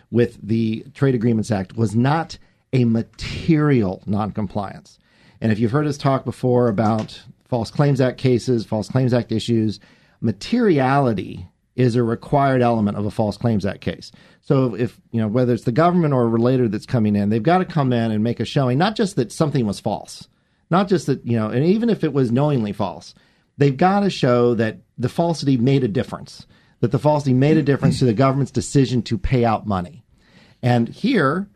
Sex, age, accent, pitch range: male, 40-59, American, 115-150 Hz